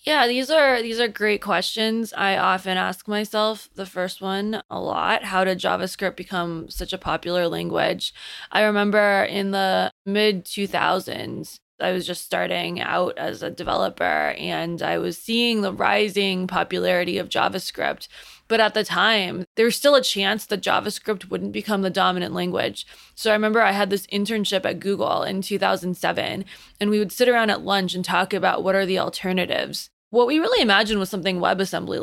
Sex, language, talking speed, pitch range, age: female, English, 175 wpm, 180-210 Hz, 20-39